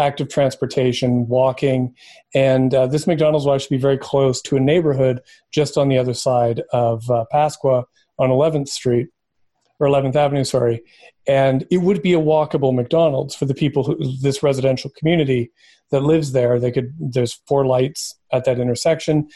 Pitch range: 130-155 Hz